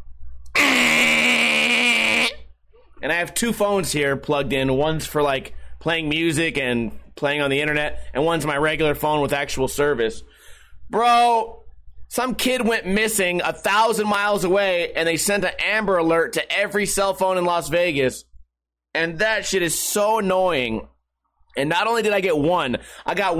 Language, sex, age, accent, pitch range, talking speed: English, male, 30-49, American, 155-220 Hz, 160 wpm